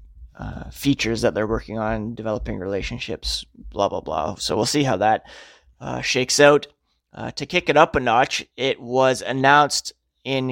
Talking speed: 170 wpm